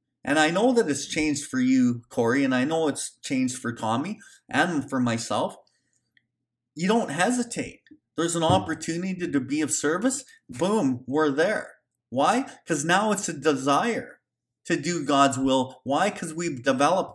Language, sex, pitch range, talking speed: English, male, 145-235 Hz, 165 wpm